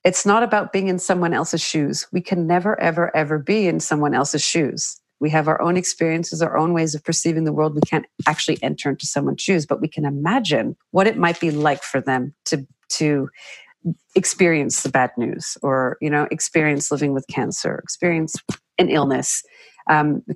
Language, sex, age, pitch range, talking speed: English, female, 40-59, 150-185 Hz, 195 wpm